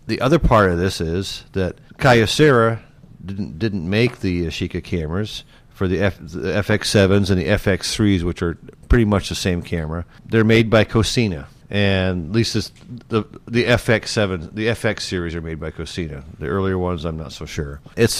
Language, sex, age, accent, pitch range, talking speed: English, male, 50-69, American, 90-115 Hz, 180 wpm